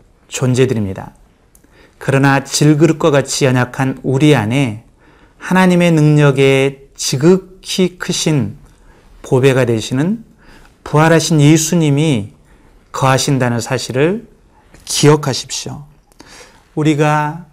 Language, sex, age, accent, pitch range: Korean, male, 30-49, native, 130-160 Hz